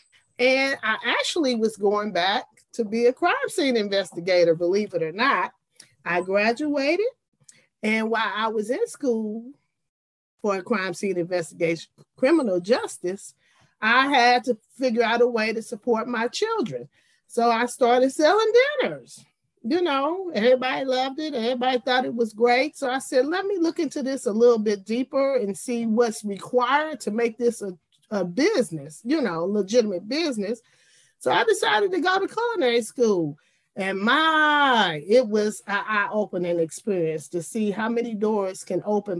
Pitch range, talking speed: 195-260 Hz, 160 wpm